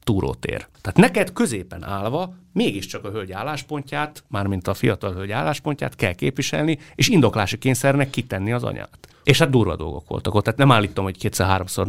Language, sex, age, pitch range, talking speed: Hungarian, male, 30-49, 95-130 Hz, 160 wpm